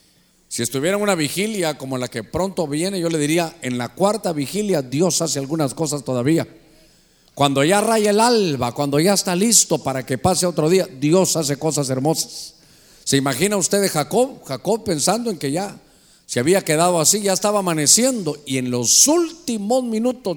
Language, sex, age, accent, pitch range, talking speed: Spanish, male, 50-69, Mexican, 140-185 Hz, 185 wpm